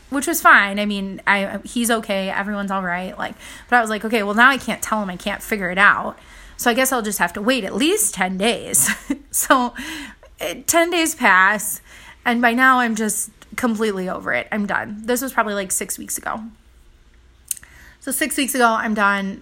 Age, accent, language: 20-39, American, English